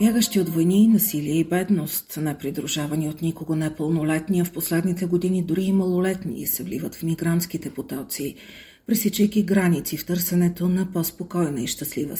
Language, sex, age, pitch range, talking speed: Bulgarian, female, 40-59, 160-195 Hz, 145 wpm